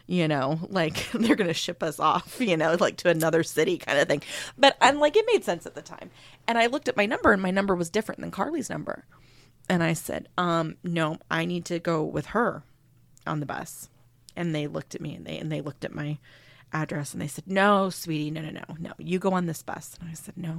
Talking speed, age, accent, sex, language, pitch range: 250 wpm, 30-49, American, female, English, 160-235 Hz